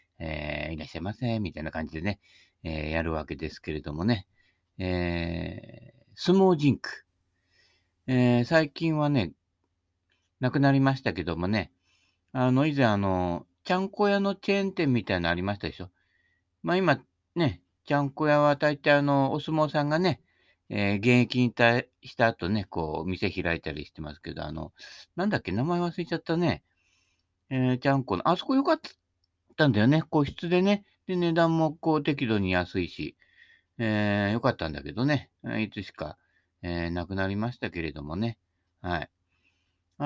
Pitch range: 90-140 Hz